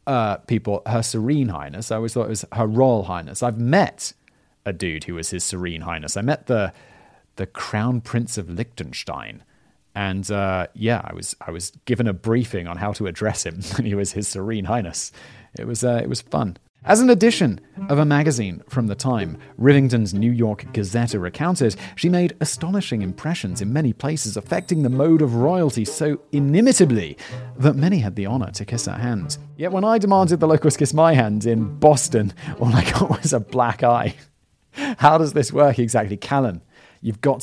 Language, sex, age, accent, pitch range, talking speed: English, male, 30-49, British, 110-150 Hz, 190 wpm